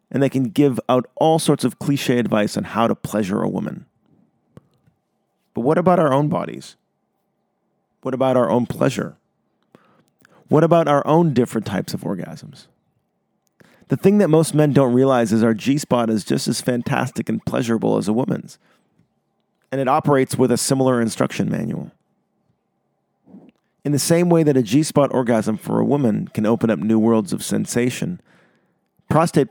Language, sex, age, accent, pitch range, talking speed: English, male, 40-59, American, 120-155 Hz, 165 wpm